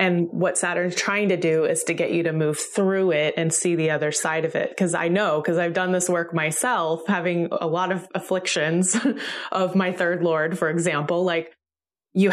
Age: 20-39